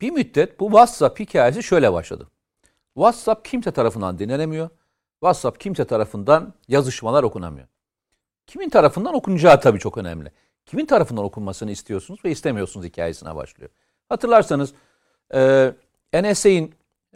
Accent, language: native, Turkish